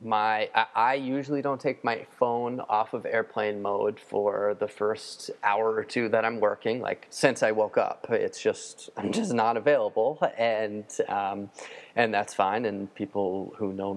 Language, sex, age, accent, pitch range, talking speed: English, male, 30-49, American, 105-140 Hz, 170 wpm